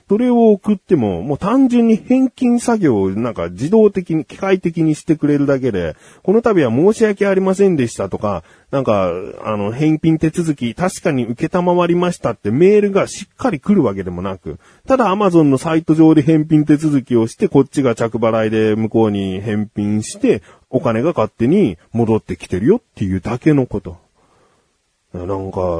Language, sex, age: Japanese, male, 40-59